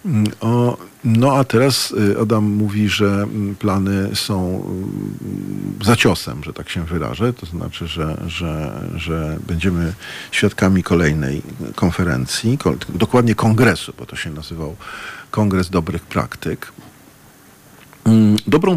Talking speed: 105 wpm